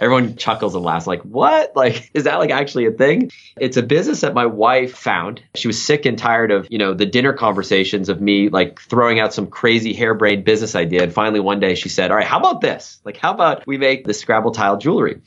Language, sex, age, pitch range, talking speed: English, male, 20-39, 105-130 Hz, 240 wpm